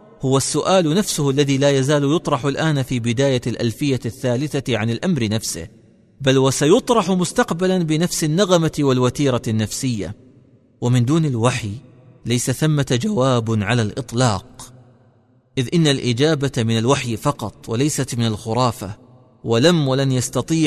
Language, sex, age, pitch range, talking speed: Arabic, male, 40-59, 120-160 Hz, 120 wpm